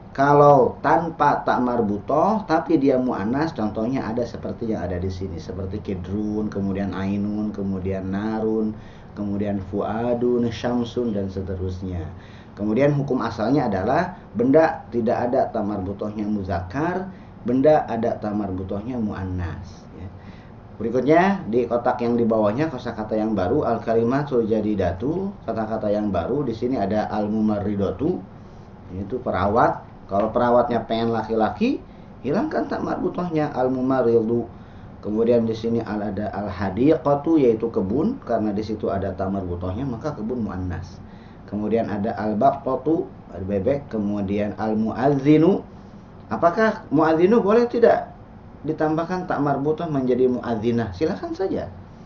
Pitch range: 100-130 Hz